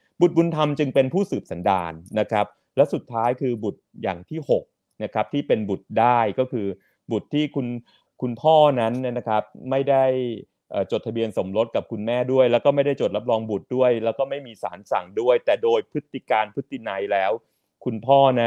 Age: 30-49